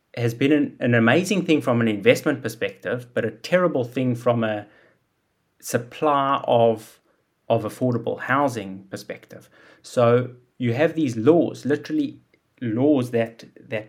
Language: English